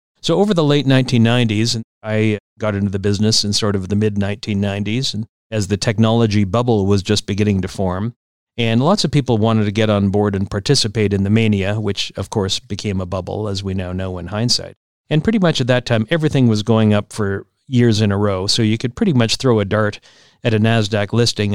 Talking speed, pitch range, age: 225 wpm, 100-120 Hz, 50-69